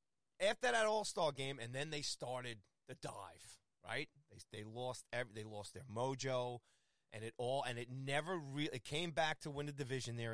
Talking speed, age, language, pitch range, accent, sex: 195 wpm, 30-49, English, 115-145 Hz, American, male